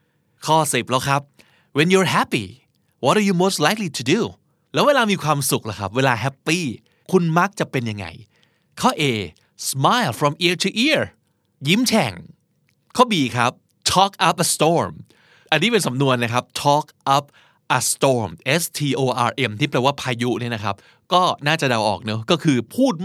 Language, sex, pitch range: Thai, male, 125-180 Hz